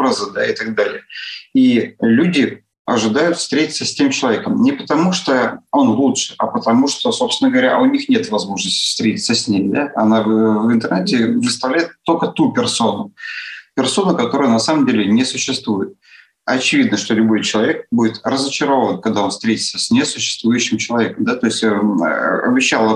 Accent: native